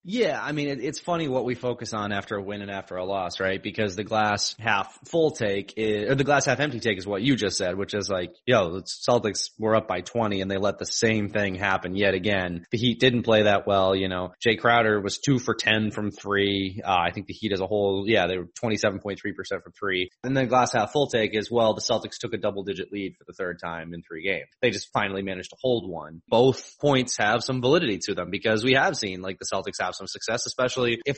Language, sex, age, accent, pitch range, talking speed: English, male, 20-39, American, 100-125 Hz, 250 wpm